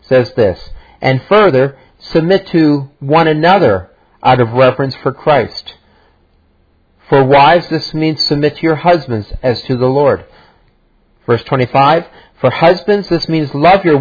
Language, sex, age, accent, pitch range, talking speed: English, male, 50-69, American, 135-175 Hz, 140 wpm